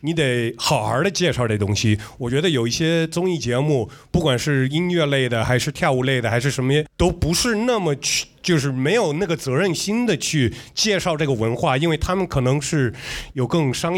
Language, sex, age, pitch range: Chinese, male, 30-49, 130-170 Hz